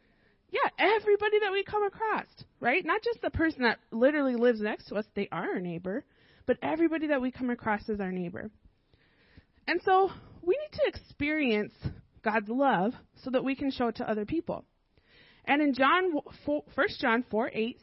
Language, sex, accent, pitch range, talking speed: English, female, American, 220-310 Hz, 180 wpm